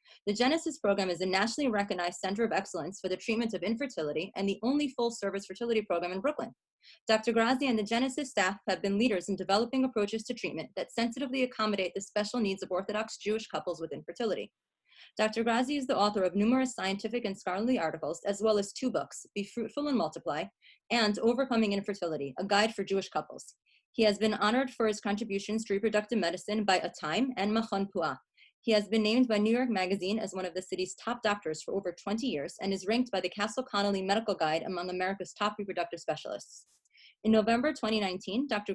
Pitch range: 185-230 Hz